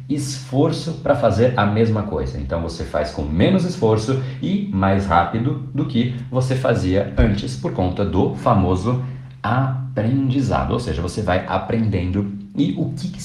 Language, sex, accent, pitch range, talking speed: Portuguese, male, Brazilian, 90-130 Hz, 155 wpm